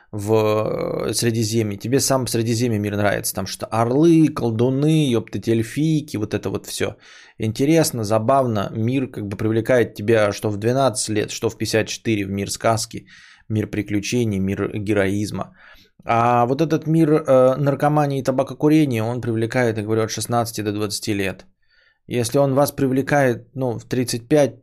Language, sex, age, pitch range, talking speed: English, male, 20-39, 100-120 Hz, 155 wpm